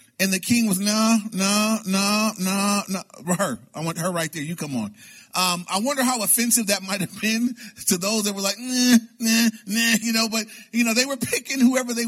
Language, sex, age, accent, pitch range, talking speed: English, male, 30-49, American, 180-230 Hz, 225 wpm